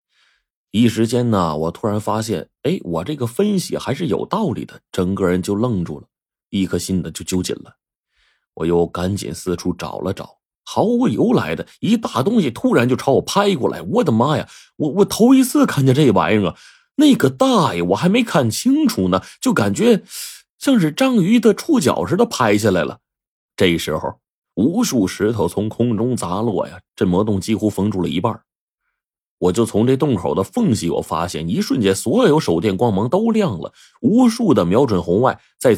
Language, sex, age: Chinese, male, 30-49